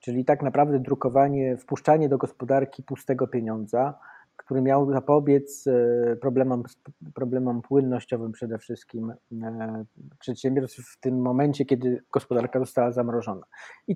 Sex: male